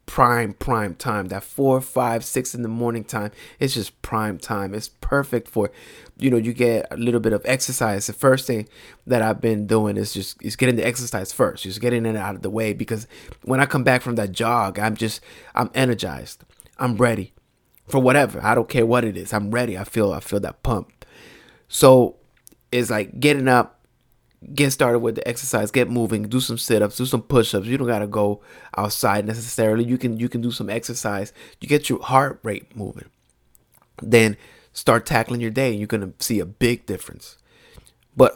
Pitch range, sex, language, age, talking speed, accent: 105-125 Hz, male, English, 30-49, 200 wpm, American